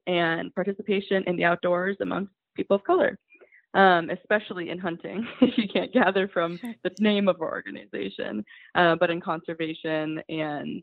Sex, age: female, 20-39